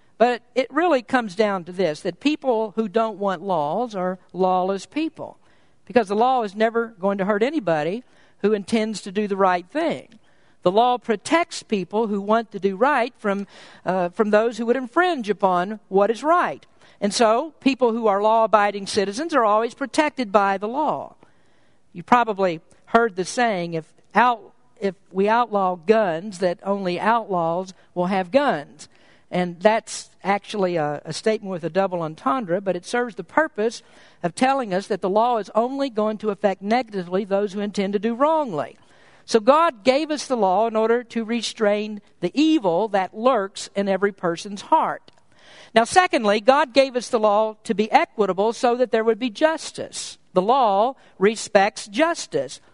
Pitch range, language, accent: 195-245 Hz, English, American